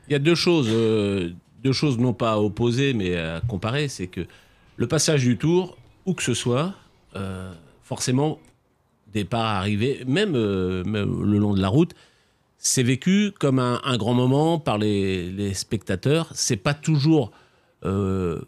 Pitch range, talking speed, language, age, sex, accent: 105-145 Hz, 170 wpm, French, 40-59, male, French